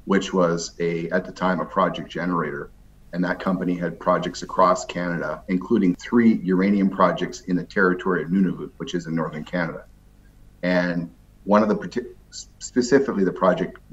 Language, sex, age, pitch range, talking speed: English, male, 40-59, 85-95 Hz, 160 wpm